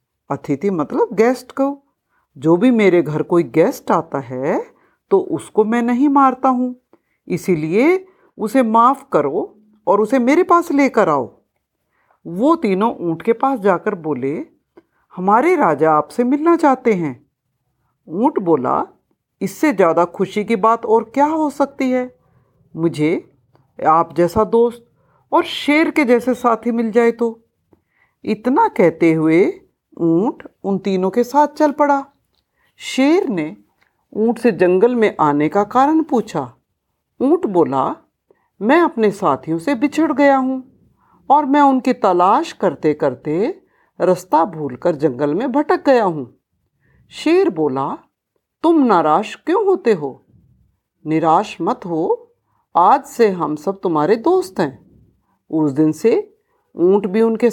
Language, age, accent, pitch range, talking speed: Hindi, 50-69, native, 170-285 Hz, 135 wpm